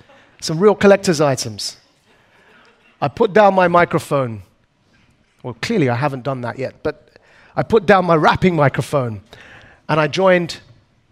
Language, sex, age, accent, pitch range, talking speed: English, male, 40-59, British, 120-170 Hz, 140 wpm